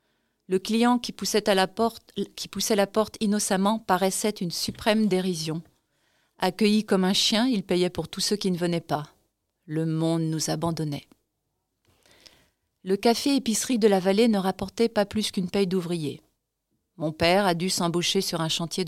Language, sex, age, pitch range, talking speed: French, female, 40-59, 165-200 Hz, 160 wpm